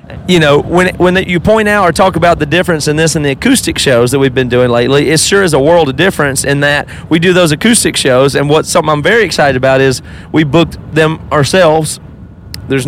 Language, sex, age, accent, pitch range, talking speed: English, male, 30-49, American, 145-175 Hz, 235 wpm